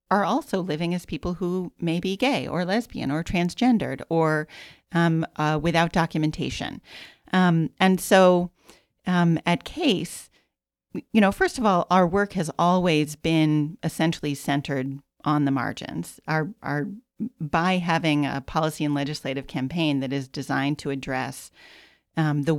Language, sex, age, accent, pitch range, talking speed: English, female, 40-59, American, 145-175 Hz, 145 wpm